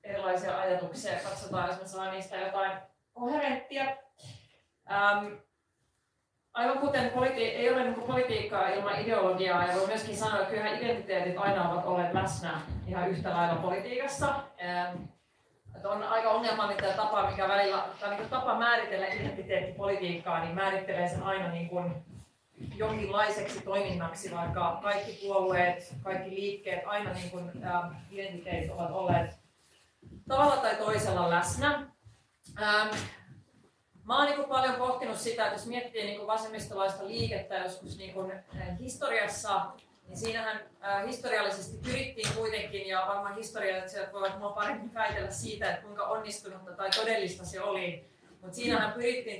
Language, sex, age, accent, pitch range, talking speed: Finnish, female, 30-49, native, 180-215 Hz, 125 wpm